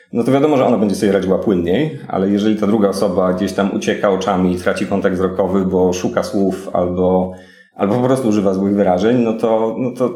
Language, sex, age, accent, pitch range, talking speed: Polish, male, 30-49, native, 95-120 Hz, 205 wpm